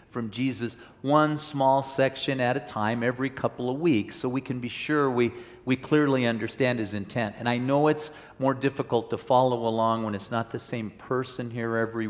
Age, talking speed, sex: 50-69, 200 wpm, male